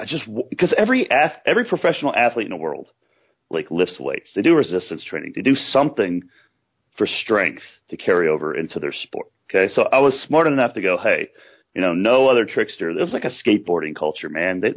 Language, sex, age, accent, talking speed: English, male, 40-59, American, 205 wpm